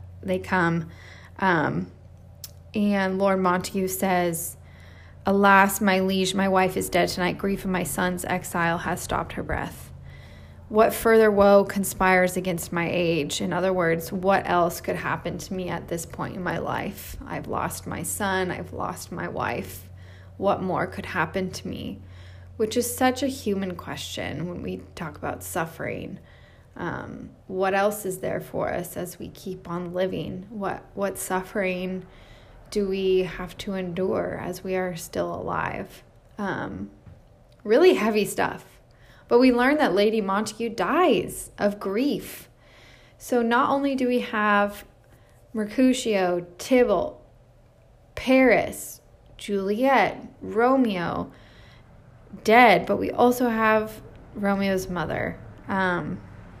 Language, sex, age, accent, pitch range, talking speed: English, female, 20-39, American, 120-205 Hz, 135 wpm